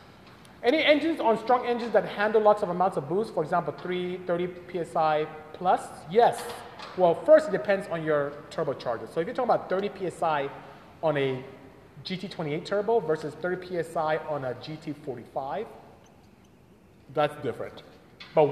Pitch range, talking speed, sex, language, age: 150-205 Hz, 145 wpm, male, English, 30-49